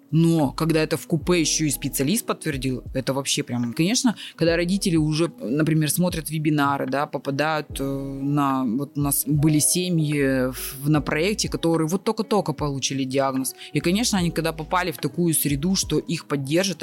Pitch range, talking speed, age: 140-165 Hz, 155 wpm, 20-39